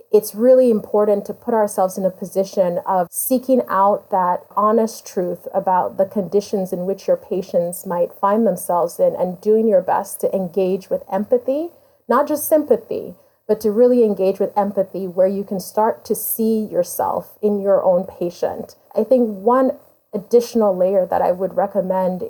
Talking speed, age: 170 wpm, 30-49